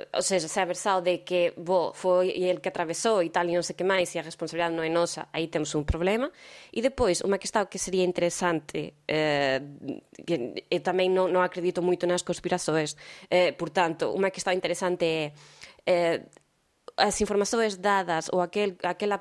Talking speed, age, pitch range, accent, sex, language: 185 wpm, 20-39, 175-215 Hz, Spanish, female, Portuguese